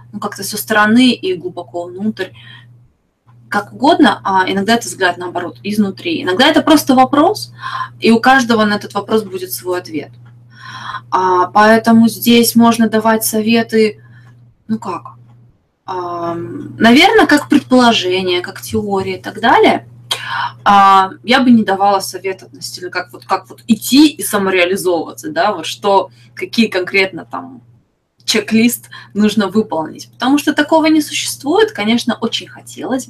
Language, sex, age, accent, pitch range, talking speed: Russian, female, 20-39, native, 185-255 Hz, 135 wpm